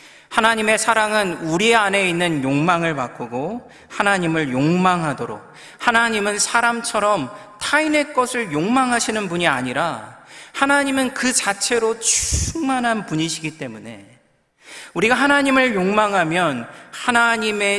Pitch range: 135-215 Hz